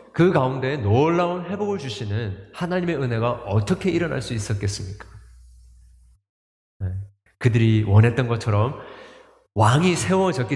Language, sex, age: Korean, male, 30-49